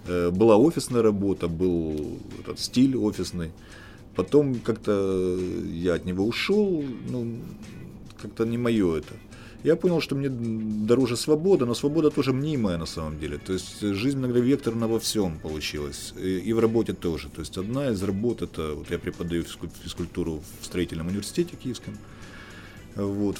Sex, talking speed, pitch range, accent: male, 155 wpm, 90-120 Hz, native